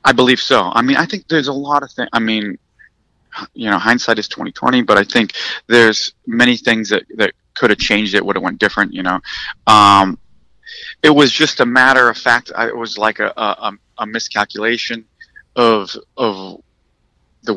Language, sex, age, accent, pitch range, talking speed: English, male, 30-49, American, 105-130 Hz, 195 wpm